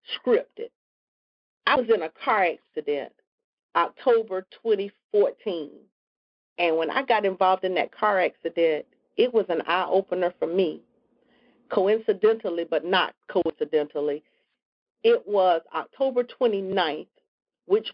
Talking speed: 115 wpm